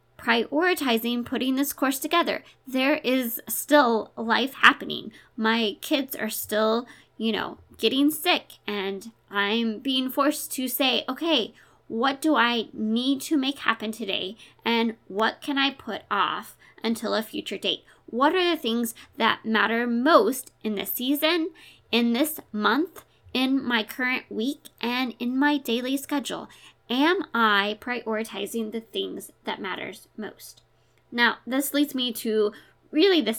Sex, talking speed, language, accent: female, 145 wpm, English, American